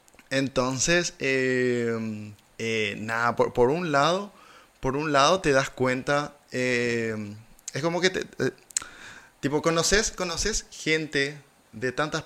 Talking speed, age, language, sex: 125 wpm, 20-39, Spanish, male